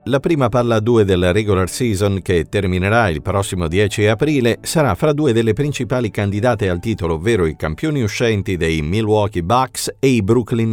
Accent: native